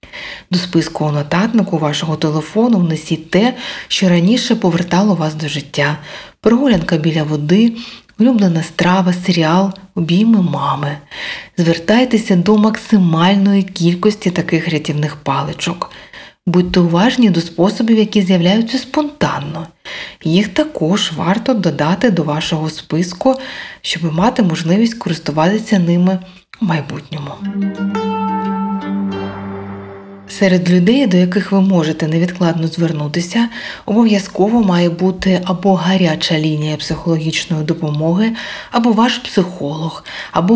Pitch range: 160-205 Hz